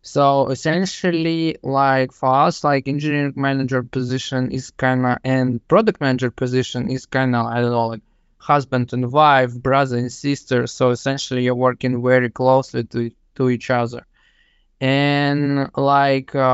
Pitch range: 125-140 Hz